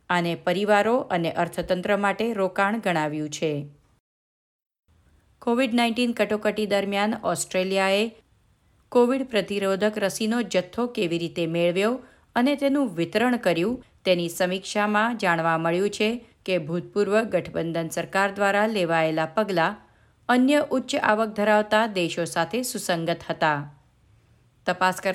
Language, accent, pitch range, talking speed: Gujarati, native, 170-220 Hz, 105 wpm